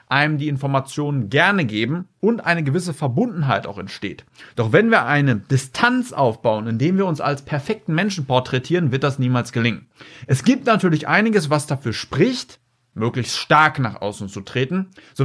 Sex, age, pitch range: male, 40-59, 130-175 Hz